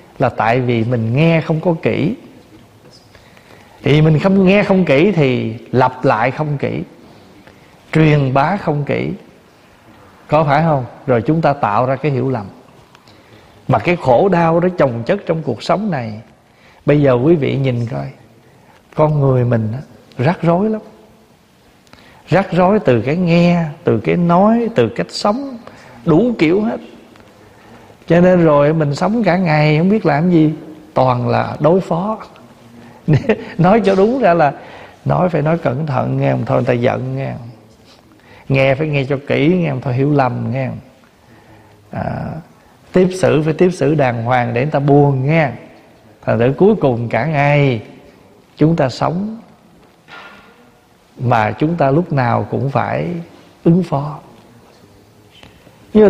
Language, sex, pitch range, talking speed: Vietnamese, male, 120-170 Hz, 160 wpm